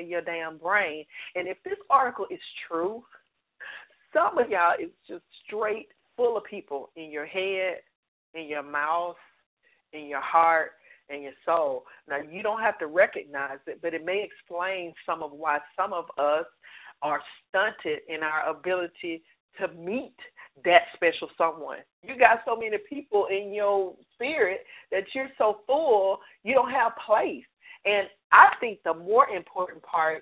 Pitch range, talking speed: 155-205 Hz, 160 wpm